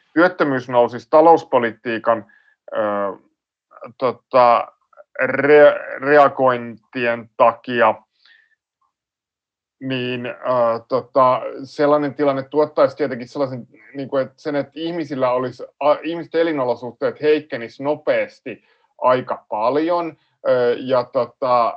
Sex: male